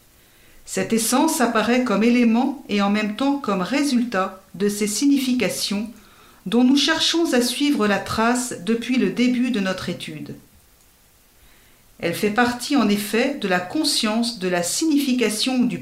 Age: 50-69